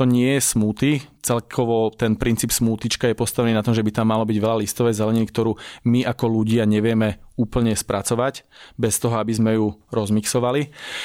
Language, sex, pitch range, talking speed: Slovak, male, 110-125 Hz, 175 wpm